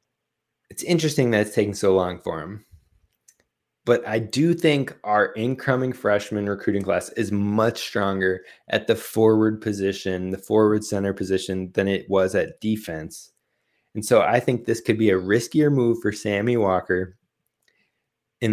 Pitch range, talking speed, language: 95-115 Hz, 155 wpm, English